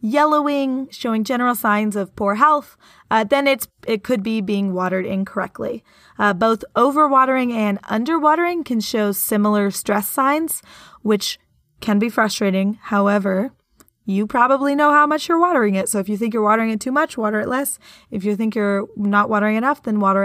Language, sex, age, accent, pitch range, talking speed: English, female, 20-39, American, 200-240 Hz, 180 wpm